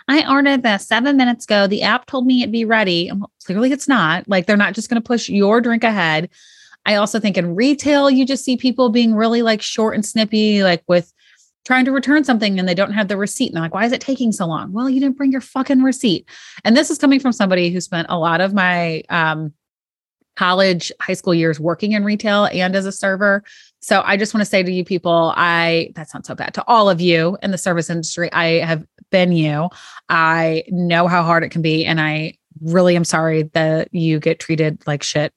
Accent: American